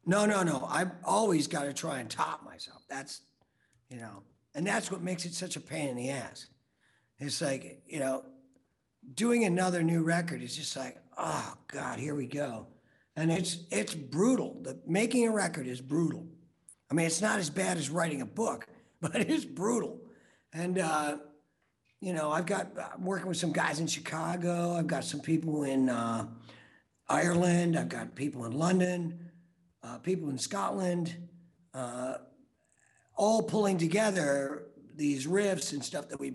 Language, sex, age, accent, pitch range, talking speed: English, male, 50-69, American, 135-185 Hz, 170 wpm